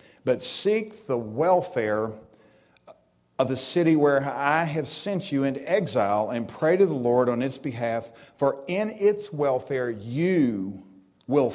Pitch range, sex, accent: 115-150 Hz, male, American